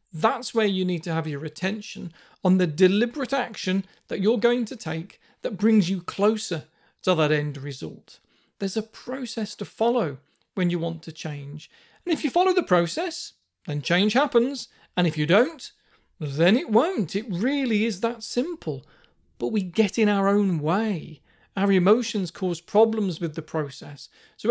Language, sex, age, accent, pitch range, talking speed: English, male, 40-59, British, 170-225 Hz, 175 wpm